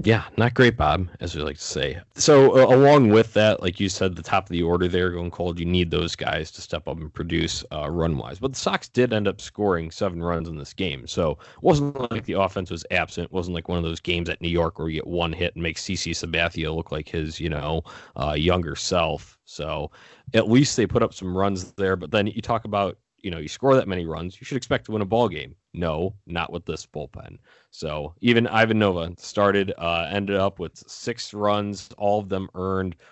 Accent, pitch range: American, 85-100 Hz